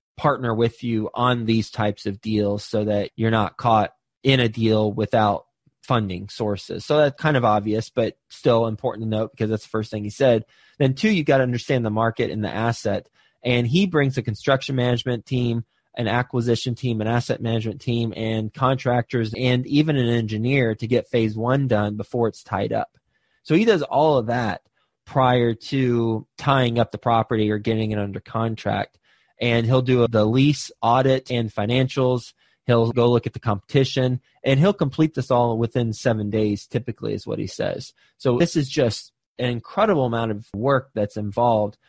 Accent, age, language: American, 20-39, English